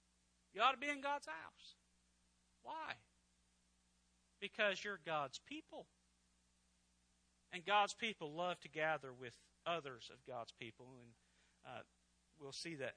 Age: 40-59